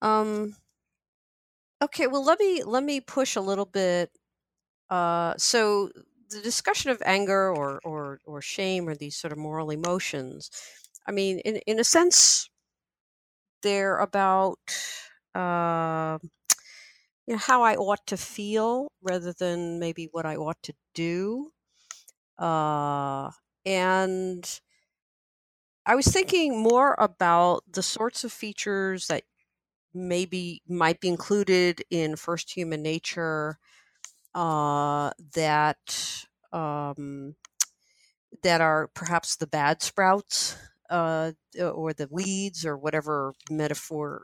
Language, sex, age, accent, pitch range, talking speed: English, female, 50-69, American, 155-200 Hz, 120 wpm